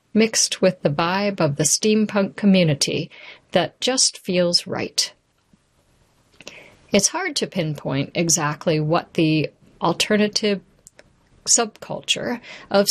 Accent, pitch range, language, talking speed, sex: American, 170-210 Hz, English, 100 wpm, female